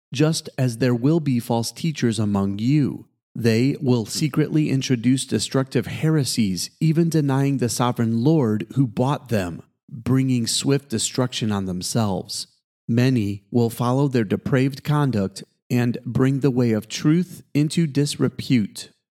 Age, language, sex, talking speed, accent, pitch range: 40-59, English, male, 130 wpm, American, 115-140 Hz